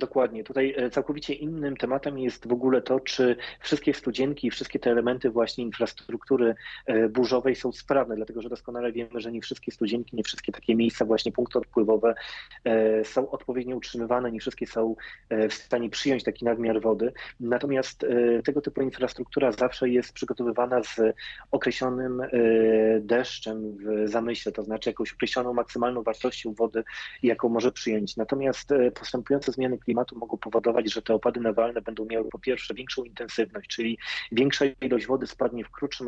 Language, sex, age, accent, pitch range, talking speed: Polish, male, 30-49, native, 115-130 Hz, 155 wpm